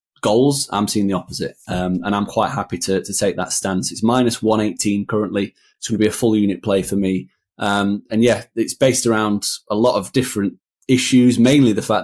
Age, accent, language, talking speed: 30-49, British, English, 215 wpm